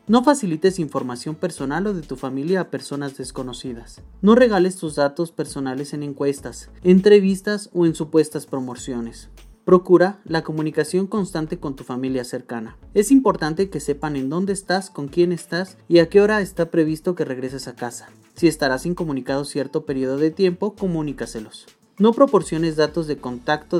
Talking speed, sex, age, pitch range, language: 160 wpm, male, 30-49, 135-180 Hz, Spanish